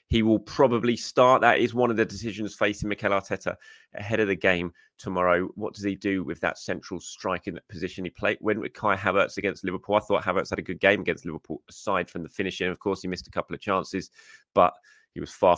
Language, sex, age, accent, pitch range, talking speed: English, male, 20-39, British, 80-100 Hz, 230 wpm